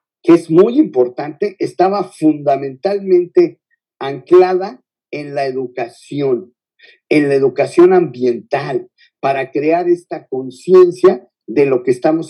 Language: Spanish